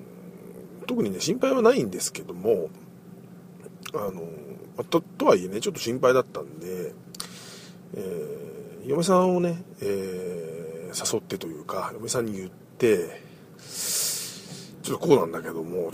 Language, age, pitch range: Japanese, 50-69, 155-215 Hz